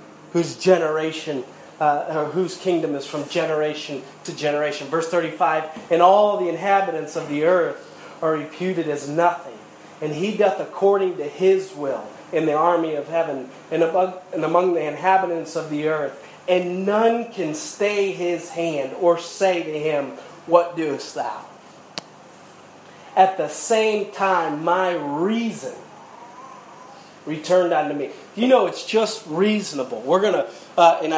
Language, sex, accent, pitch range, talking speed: English, male, American, 155-185 Hz, 145 wpm